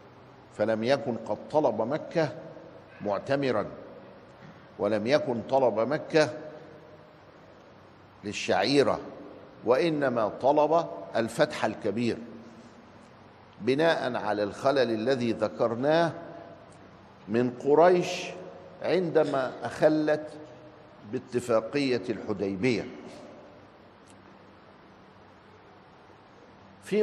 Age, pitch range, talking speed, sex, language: 60-79, 110-160 Hz, 60 wpm, male, Arabic